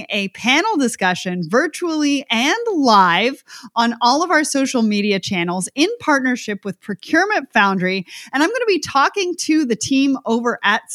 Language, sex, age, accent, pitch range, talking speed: English, female, 30-49, American, 210-290 Hz, 160 wpm